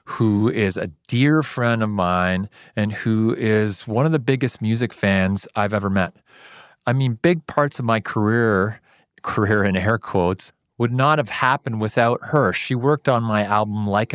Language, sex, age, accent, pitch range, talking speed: English, male, 40-59, American, 100-125 Hz, 180 wpm